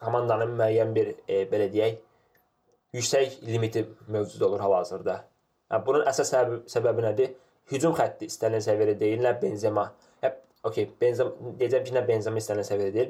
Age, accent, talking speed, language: 20-39, Turkish, 145 wpm, English